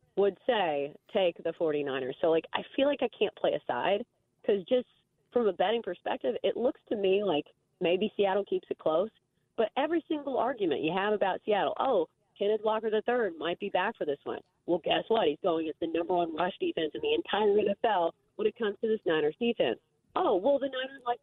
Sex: female